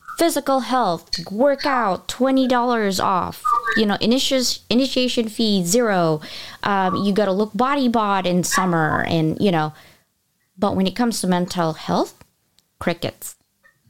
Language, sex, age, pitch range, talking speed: English, female, 20-39, 175-230 Hz, 130 wpm